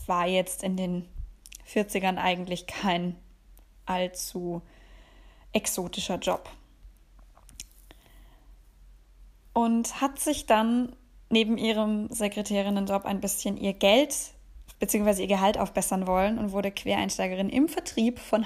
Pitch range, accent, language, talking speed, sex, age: 190-225 Hz, German, German, 105 wpm, female, 20-39